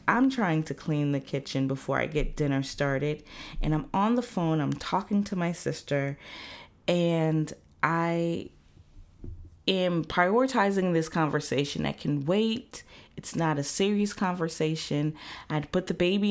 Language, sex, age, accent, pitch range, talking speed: English, female, 20-39, American, 150-190 Hz, 145 wpm